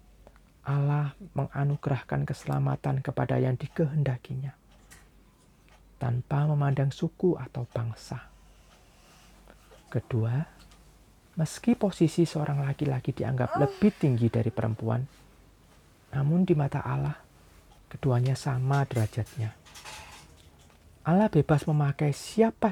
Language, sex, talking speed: Indonesian, male, 85 wpm